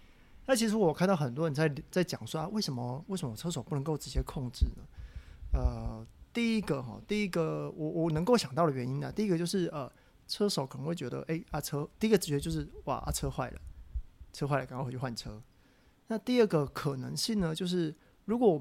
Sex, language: male, Chinese